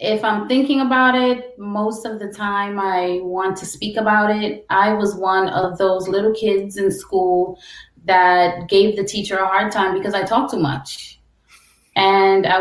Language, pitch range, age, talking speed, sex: English, 195-230 Hz, 20-39, 180 wpm, female